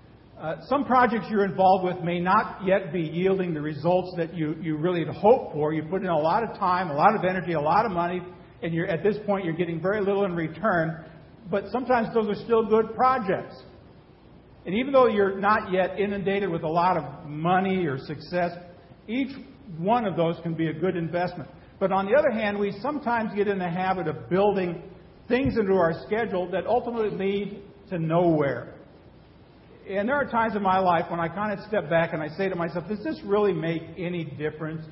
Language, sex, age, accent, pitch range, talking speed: English, male, 50-69, American, 165-205 Hz, 210 wpm